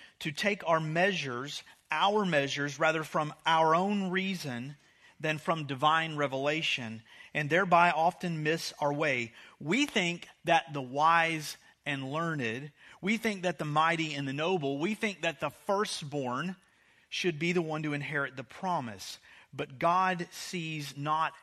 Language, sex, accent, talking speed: English, male, American, 150 wpm